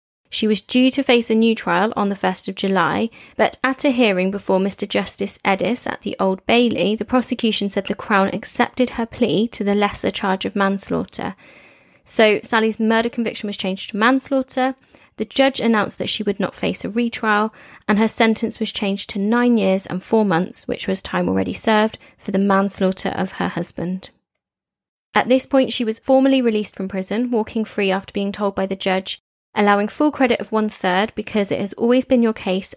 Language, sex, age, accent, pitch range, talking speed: English, female, 20-39, British, 195-230 Hz, 200 wpm